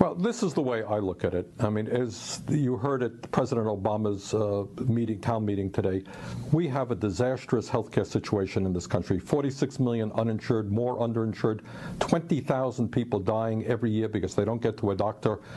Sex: male